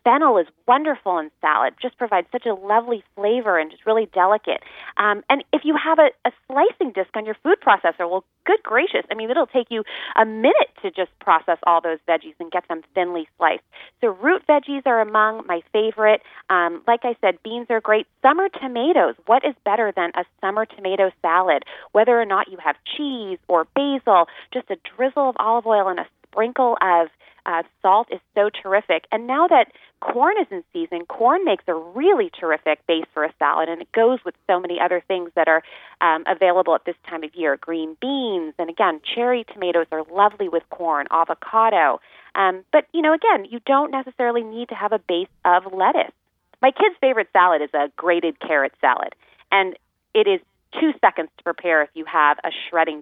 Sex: female